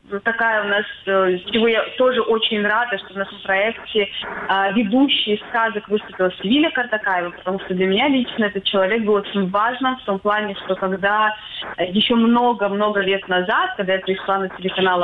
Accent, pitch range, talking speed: native, 195-235 Hz, 170 wpm